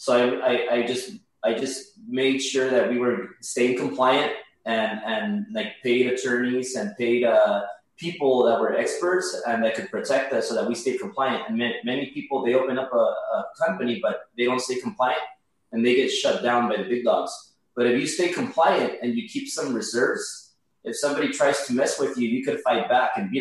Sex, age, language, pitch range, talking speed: male, 20-39, English, 120-175 Hz, 215 wpm